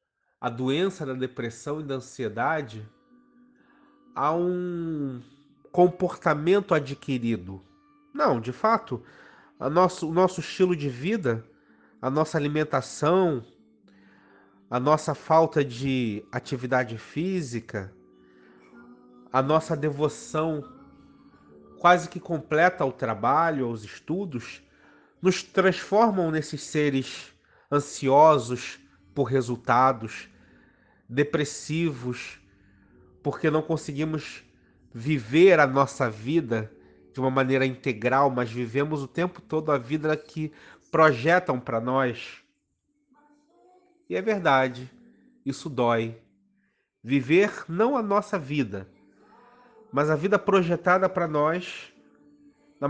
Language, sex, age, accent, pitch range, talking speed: Portuguese, male, 30-49, Brazilian, 120-175 Hz, 100 wpm